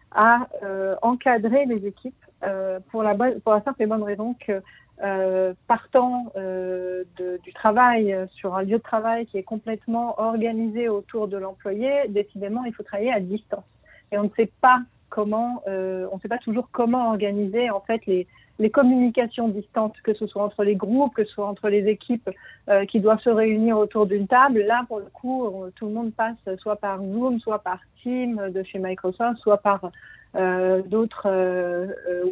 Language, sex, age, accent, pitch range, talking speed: French, female, 40-59, French, 195-230 Hz, 190 wpm